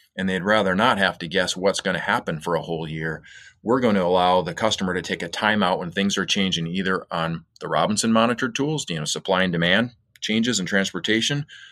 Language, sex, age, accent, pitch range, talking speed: English, male, 30-49, American, 90-110 Hz, 220 wpm